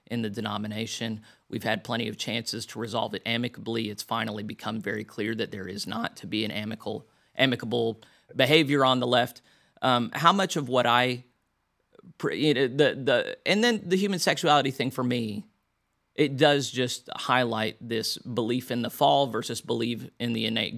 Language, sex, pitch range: English, male, 110-125 Hz